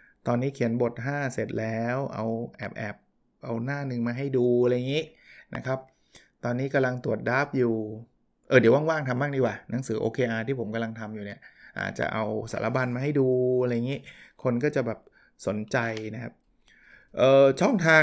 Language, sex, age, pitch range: Thai, male, 20-39, 115-145 Hz